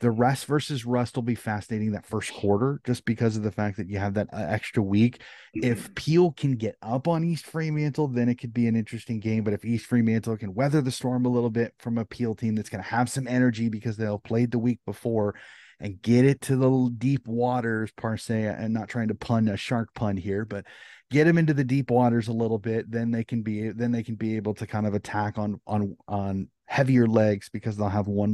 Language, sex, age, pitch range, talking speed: English, male, 30-49, 105-120 Hz, 240 wpm